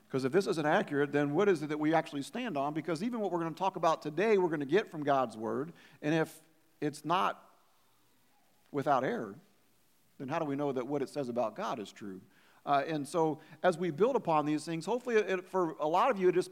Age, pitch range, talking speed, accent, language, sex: 50-69, 130-180 Hz, 245 wpm, American, English, male